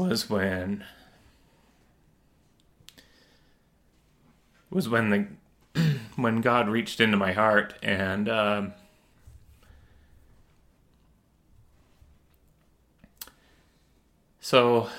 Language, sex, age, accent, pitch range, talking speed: English, male, 30-49, American, 95-110 Hz, 55 wpm